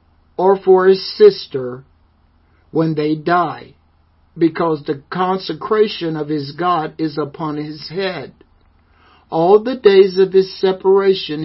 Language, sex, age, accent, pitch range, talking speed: English, male, 60-79, American, 130-180 Hz, 120 wpm